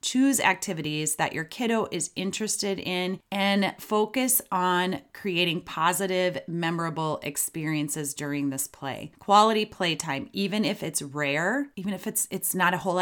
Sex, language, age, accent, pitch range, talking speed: female, English, 30-49, American, 150-195 Hz, 145 wpm